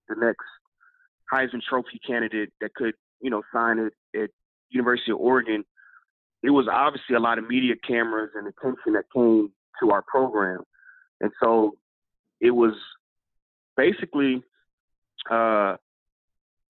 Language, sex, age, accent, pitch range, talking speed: English, male, 30-49, American, 110-135 Hz, 130 wpm